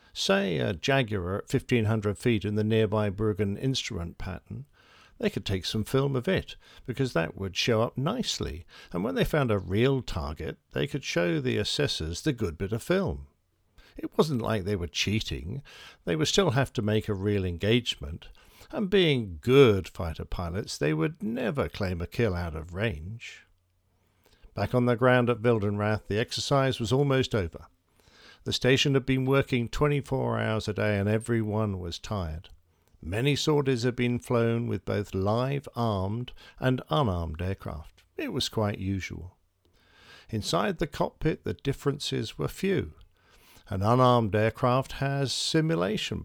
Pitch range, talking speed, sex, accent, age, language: 95-130 Hz, 160 wpm, male, British, 50-69, English